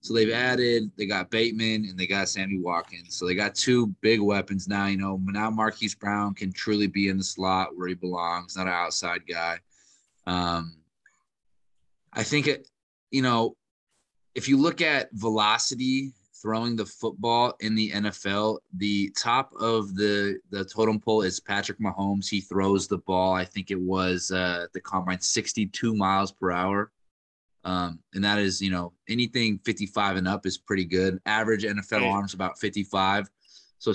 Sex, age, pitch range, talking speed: male, 20-39, 95-115 Hz, 170 wpm